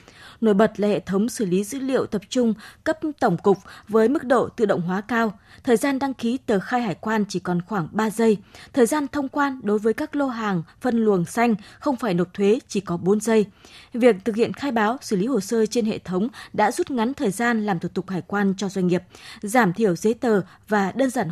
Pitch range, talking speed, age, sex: 140-225 Hz, 240 wpm, 20-39, female